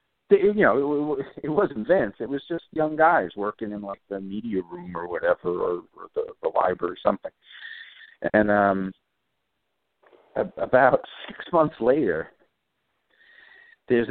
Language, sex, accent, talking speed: English, male, American, 130 wpm